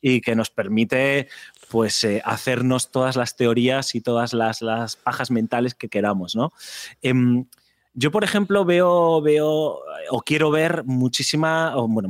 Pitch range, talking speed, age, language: 115-145 Hz, 155 wpm, 30-49, Spanish